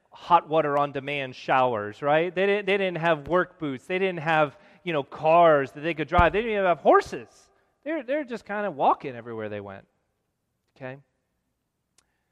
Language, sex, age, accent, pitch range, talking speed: English, male, 30-49, American, 135-180 Hz, 180 wpm